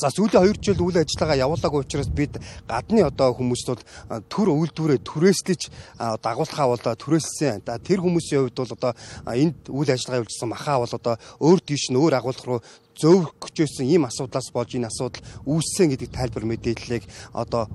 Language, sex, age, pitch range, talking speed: English, male, 40-59, 110-145 Hz, 145 wpm